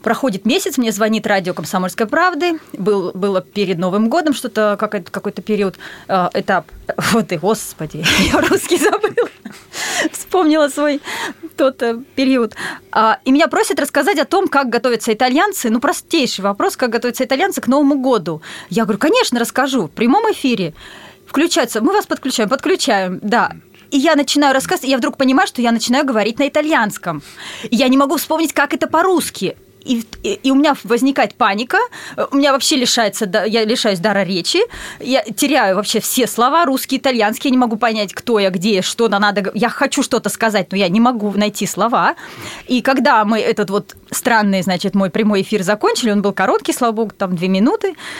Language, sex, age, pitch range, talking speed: Russian, female, 20-39, 205-275 Hz, 170 wpm